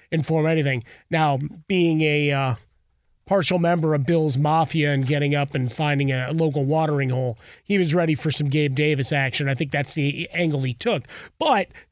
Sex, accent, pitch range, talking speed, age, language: male, American, 145-185 Hz, 185 wpm, 30-49, English